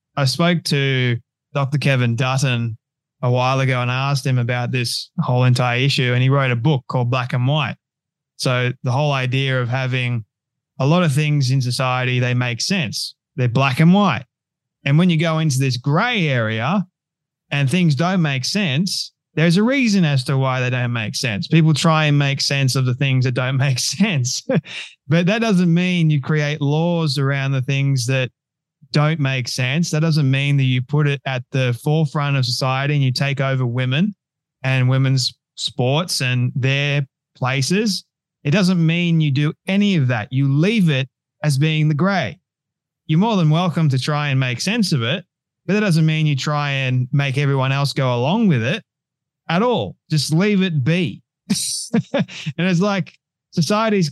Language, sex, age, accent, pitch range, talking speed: English, male, 20-39, Australian, 130-160 Hz, 185 wpm